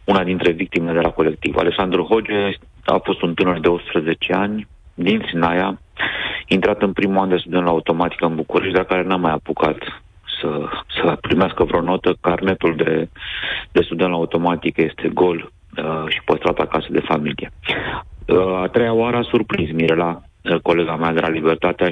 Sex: male